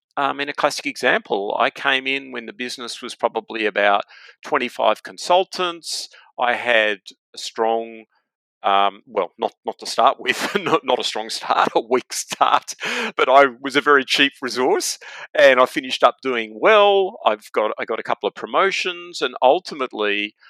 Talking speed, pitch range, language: 175 wpm, 105-145 Hz, English